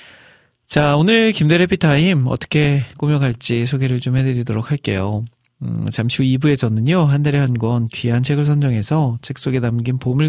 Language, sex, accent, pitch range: Korean, male, native, 115-145 Hz